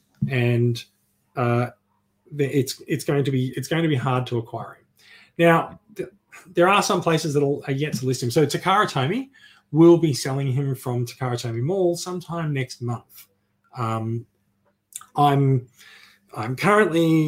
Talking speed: 150 wpm